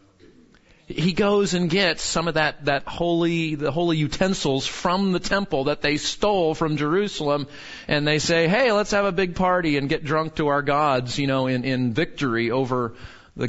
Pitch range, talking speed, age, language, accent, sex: 120-150 Hz, 185 wpm, 40-59, English, American, male